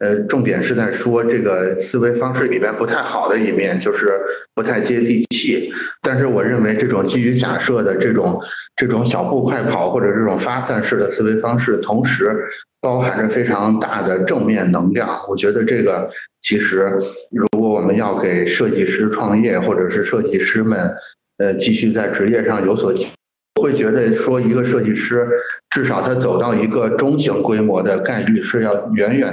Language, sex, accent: Chinese, male, native